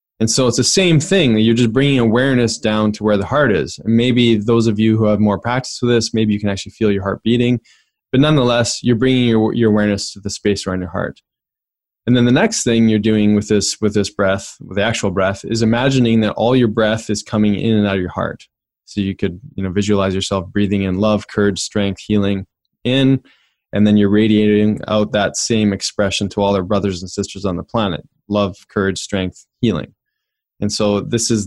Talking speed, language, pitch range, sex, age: 225 wpm, English, 100-115 Hz, male, 20-39